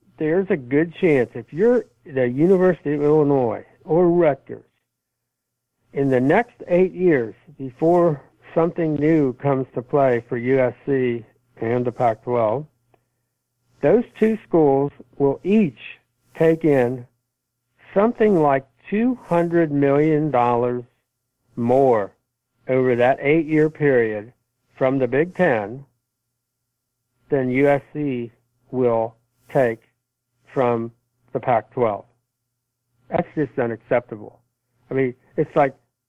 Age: 60-79